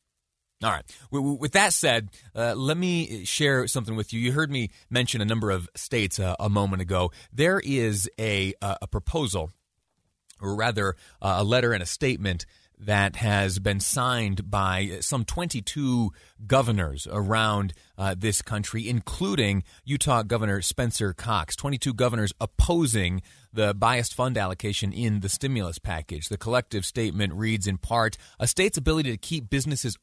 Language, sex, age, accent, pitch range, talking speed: English, male, 30-49, American, 100-145 Hz, 150 wpm